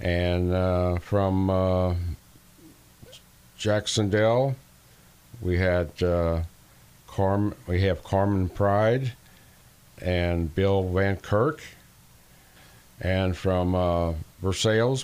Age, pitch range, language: 50-69, 85-105 Hz, English